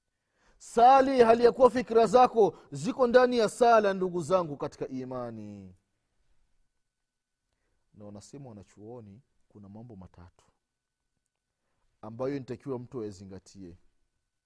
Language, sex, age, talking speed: Swahili, male, 40-59, 90 wpm